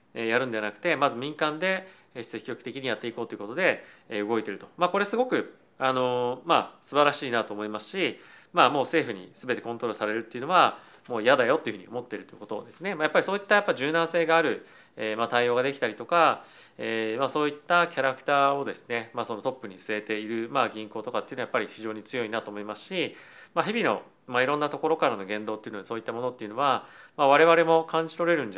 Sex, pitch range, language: male, 110-160 Hz, Japanese